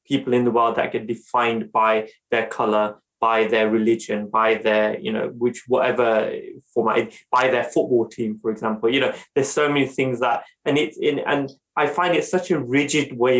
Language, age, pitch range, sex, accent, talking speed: English, 20-39, 115-135 Hz, male, British, 195 wpm